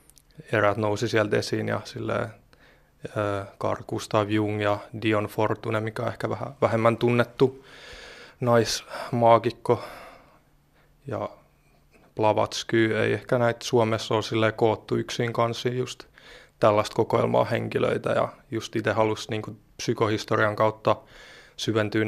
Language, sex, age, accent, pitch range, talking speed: Finnish, male, 20-39, native, 105-115 Hz, 115 wpm